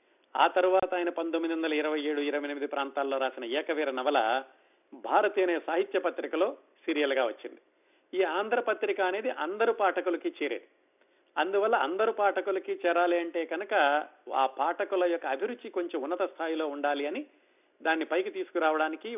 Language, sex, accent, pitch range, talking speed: Telugu, male, native, 145-185 Hz, 120 wpm